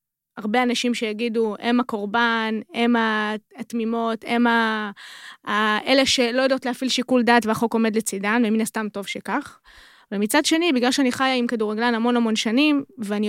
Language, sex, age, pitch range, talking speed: Hebrew, female, 20-39, 215-250 Hz, 145 wpm